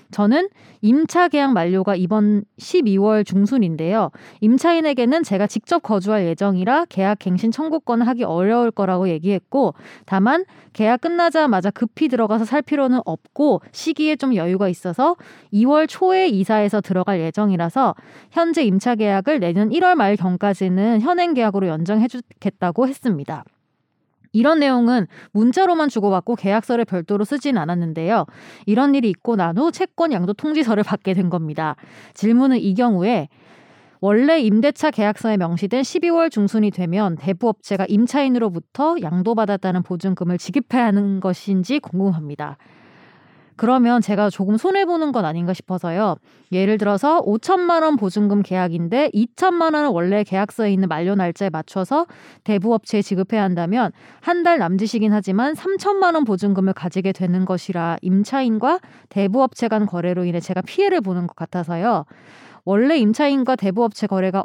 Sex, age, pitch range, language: female, 20-39, 190-265 Hz, Korean